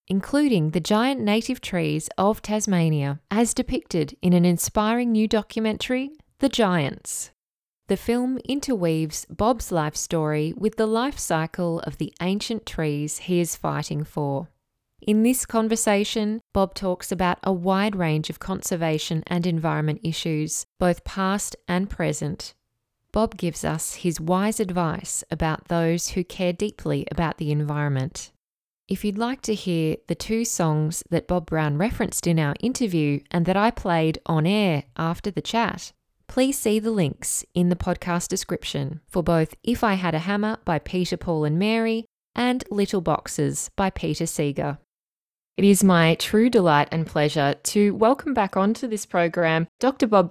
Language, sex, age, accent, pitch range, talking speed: English, female, 10-29, Australian, 160-215 Hz, 155 wpm